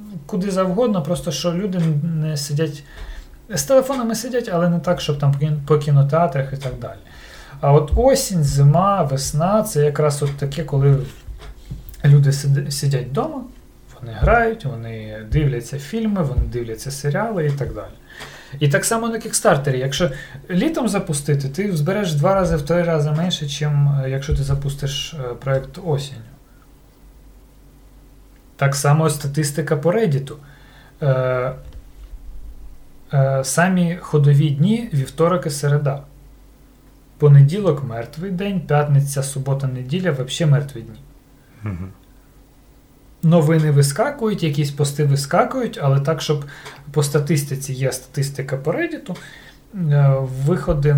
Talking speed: 120 wpm